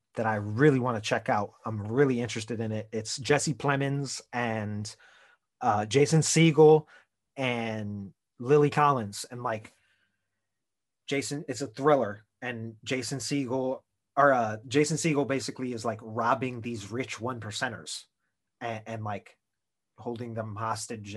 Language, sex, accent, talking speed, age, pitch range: English, male, American, 140 wpm, 30-49, 115-150 Hz